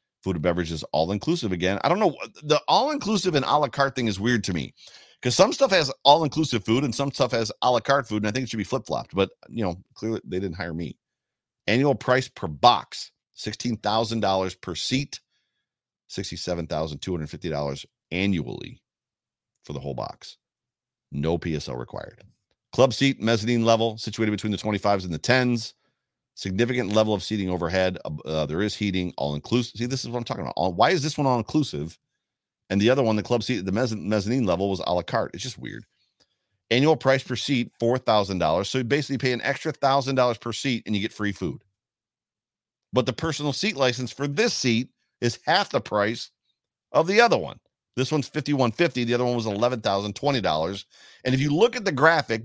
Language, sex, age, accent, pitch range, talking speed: English, male, 40-59, American, 100-135 Hz, 200 wpm